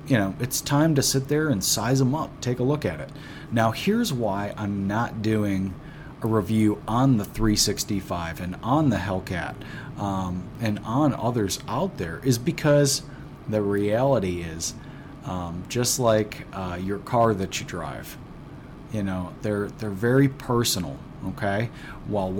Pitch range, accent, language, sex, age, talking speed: 100-135 Hz, American, English, male, 30-49, 160 wpm